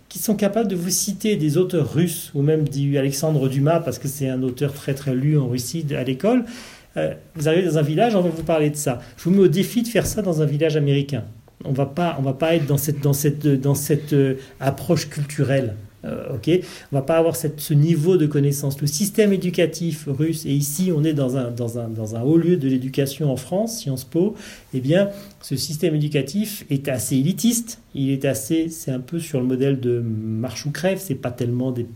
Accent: French